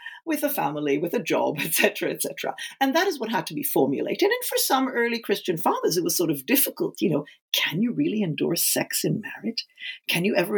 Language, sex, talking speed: English, female, 235 wpm